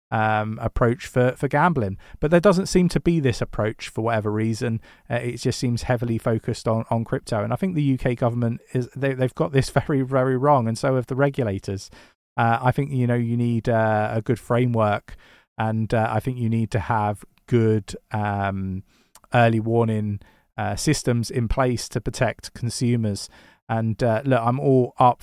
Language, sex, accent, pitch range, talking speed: English, male, British, 110-130 Hz, 190 wpm